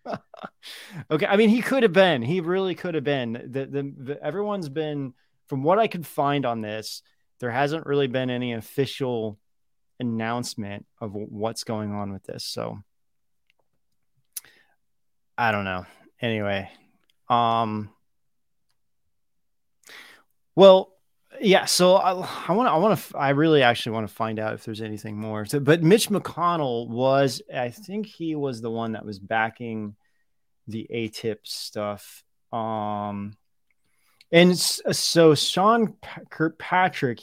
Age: 20-39